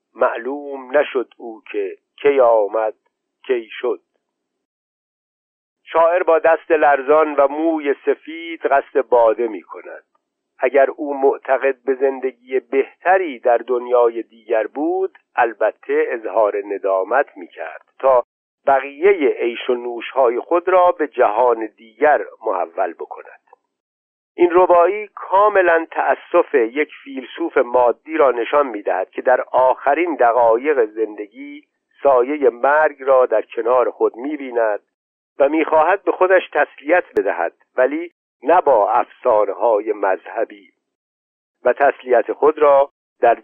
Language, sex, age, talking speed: Persian, male, 50-69, 115 wpm